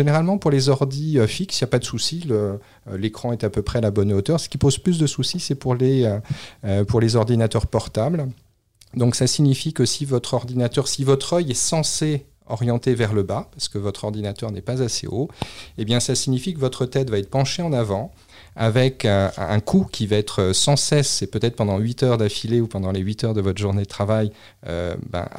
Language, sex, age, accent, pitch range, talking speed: French, male, 40-59, French, 105-130 Hz, 230 wpm